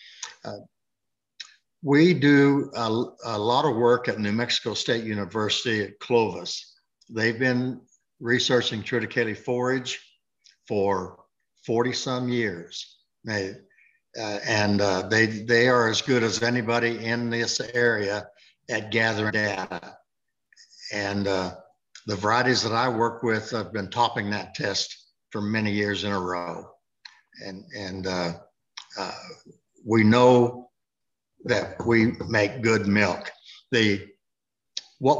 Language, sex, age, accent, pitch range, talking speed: English, male, 60-79, American, 105-125 Hz, 125 wpm